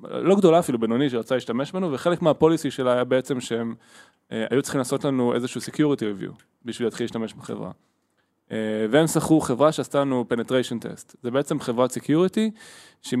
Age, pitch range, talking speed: 20-39, 115-140 Hz, 175 wpm